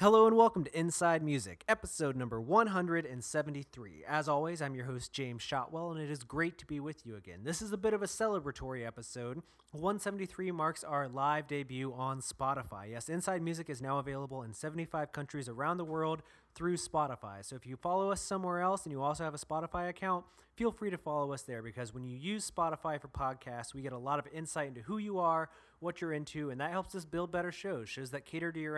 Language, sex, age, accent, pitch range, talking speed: English, male, 20-39, American, 130-175 Hz, 220 wpm